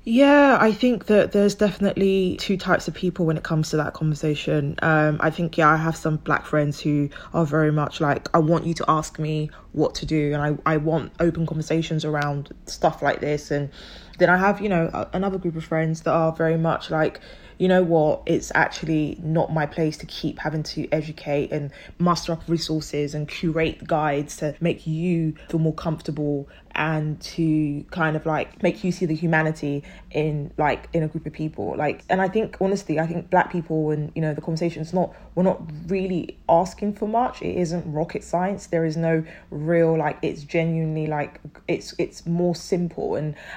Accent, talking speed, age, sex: British, 200 wpm, 20-39, female